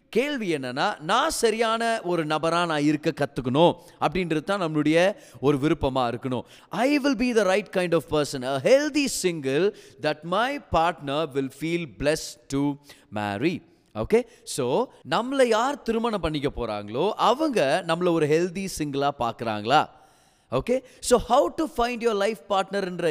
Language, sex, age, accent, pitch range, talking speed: Tamil, male, 30-49, native, 150-195 Hz, 110 wpm